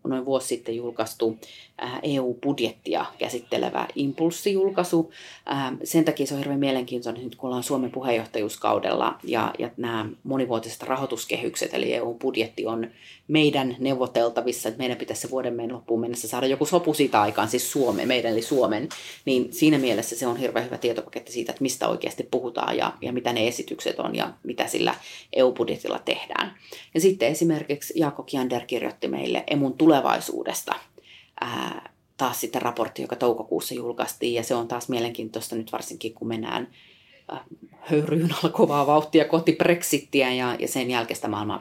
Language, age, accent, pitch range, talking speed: Finnish, 30-49, native, 120-145 Hz, 150 wpm